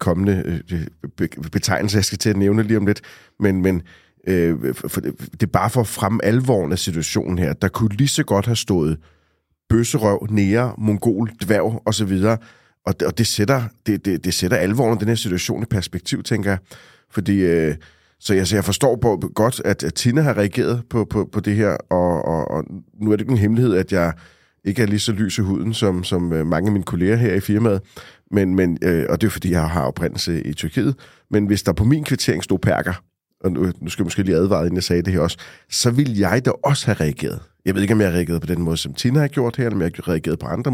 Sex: male